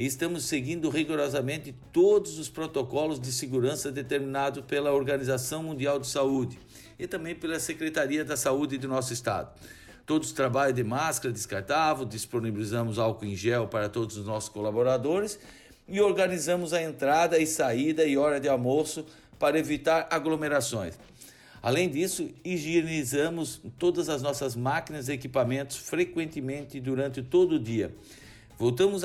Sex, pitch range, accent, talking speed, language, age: male, 125-155 Hz, Brazilian, 135 wpm, Portuguese, 60-79